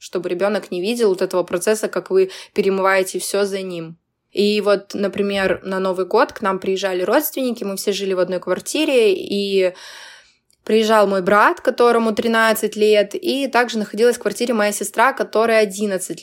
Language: Russian